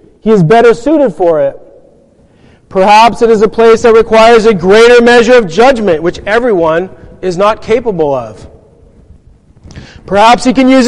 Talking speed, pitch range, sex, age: 155 wpm, 185-245 Hz, male, 40-59